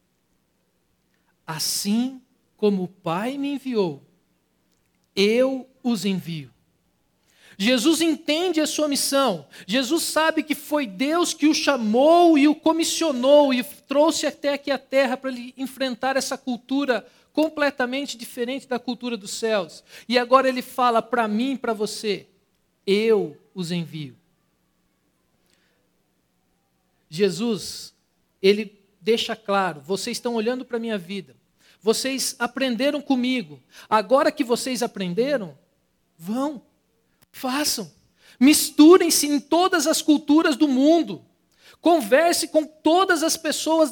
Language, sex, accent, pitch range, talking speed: Portuguese, male, Brazilian, 190-285 Hz, 120 wpm